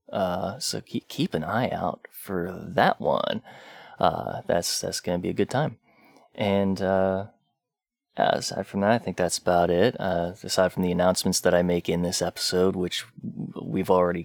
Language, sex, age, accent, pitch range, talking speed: English, male, 20-39, American, 90-110 Hz, 180 wpm